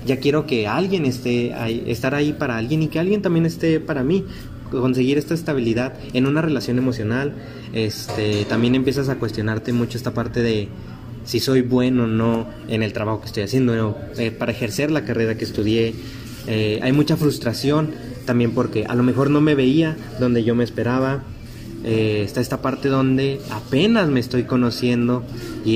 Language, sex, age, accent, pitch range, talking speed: Spanish, male, 20-39, Mexican, 115-135 Hz, 180 wpm